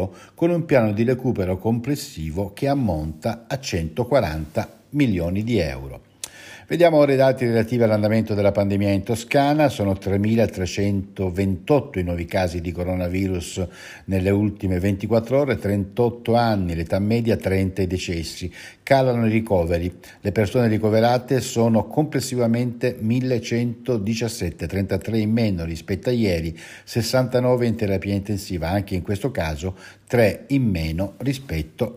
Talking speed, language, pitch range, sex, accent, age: 130 wpm, Italian, 95-120 Hz, male, native, 60-79